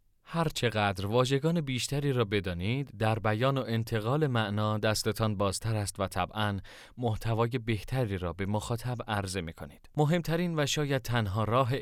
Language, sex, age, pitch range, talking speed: Persian, male, 30-49, 100-125 Hz, 140 wpm